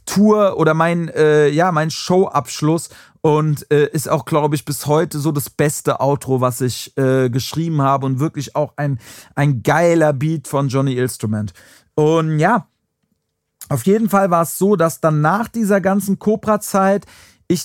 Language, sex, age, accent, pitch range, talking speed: German, male, 40-59, German, 150-185 Hz, 165 wpm